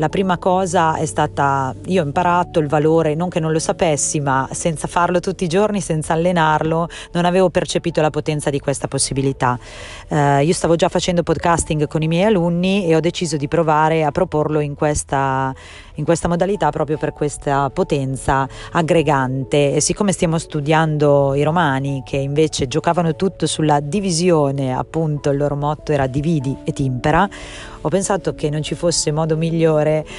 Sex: female